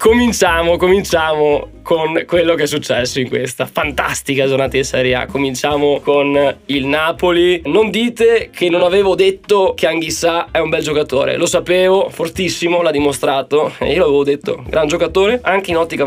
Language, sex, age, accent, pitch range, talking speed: Italian, male, 20-39, native, 135-175 Hz, 165 wpm